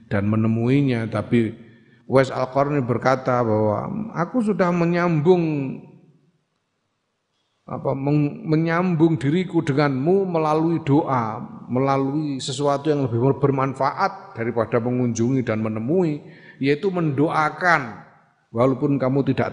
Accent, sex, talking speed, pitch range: native, male, 95 wpm, 120-155 Hz